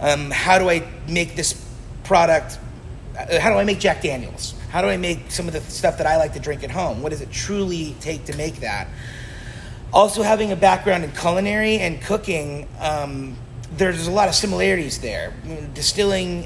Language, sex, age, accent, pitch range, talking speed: English, male, 30-49, American, 135-170 Hz, 190 wpm